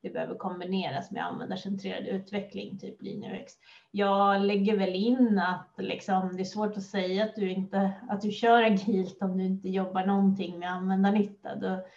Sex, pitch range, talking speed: female, 190-210 Hz, 175 wpm